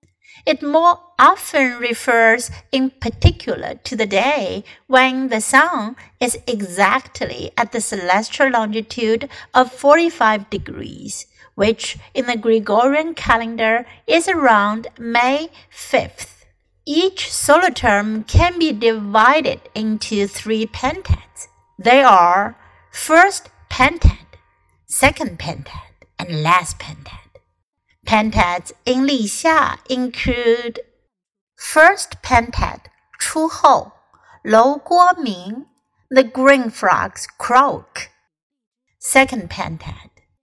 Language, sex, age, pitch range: Chinese, female, 60-79, 220-295 Hz